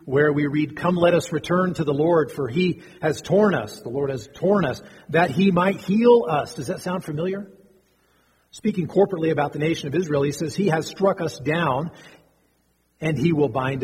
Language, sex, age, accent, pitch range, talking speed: English, male, 40-59, American, 145-185 Hz, 205 wpm